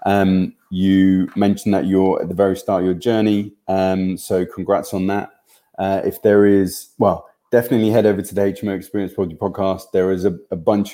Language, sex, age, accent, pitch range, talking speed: English, male, 20-39, British, 90-100 Hz, 195 wpm